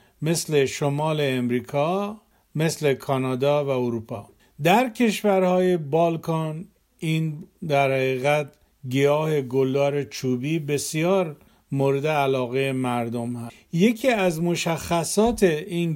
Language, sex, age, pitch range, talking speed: Persian, male, 50-69, 140-185 Hz, 95 wpm